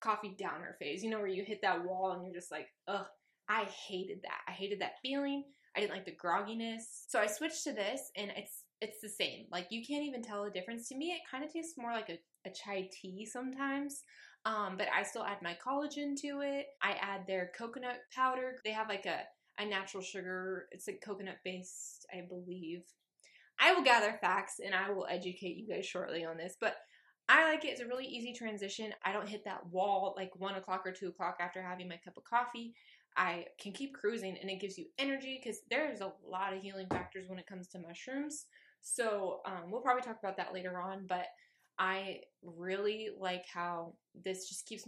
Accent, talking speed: American, 215 wpm